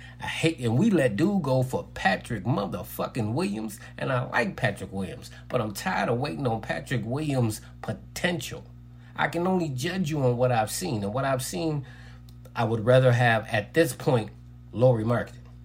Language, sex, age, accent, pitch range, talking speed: English, male, 30-49, American, 105-135 Hz, 180 wpm